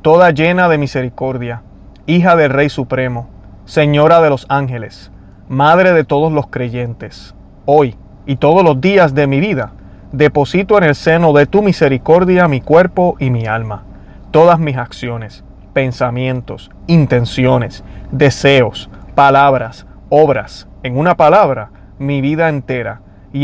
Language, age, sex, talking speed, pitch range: Spanish, 30-49, male, 135 wpm, 120-155 Hz